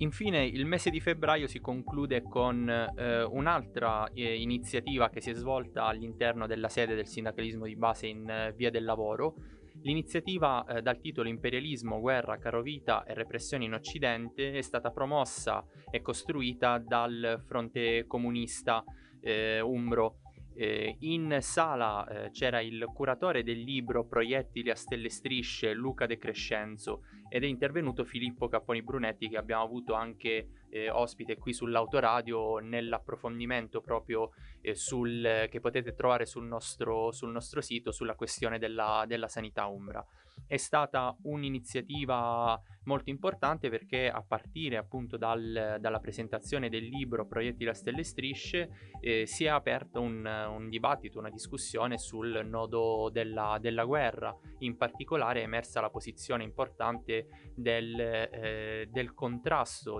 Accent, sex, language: native, male, Italian